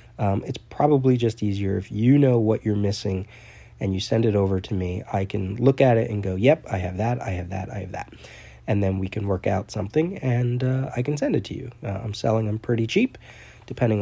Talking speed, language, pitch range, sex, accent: 245 wpm, English, 100-120 Hz, male, American